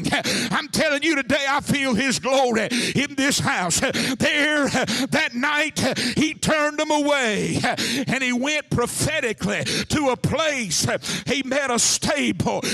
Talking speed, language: 135 wpm, English